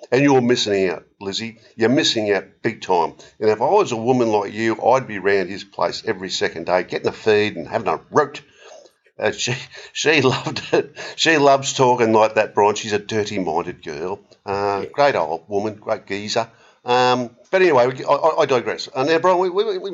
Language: English